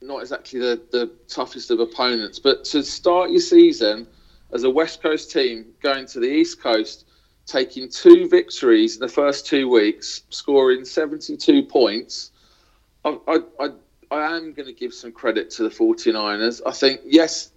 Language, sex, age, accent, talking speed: English, male, 40-59, British, 165 wpm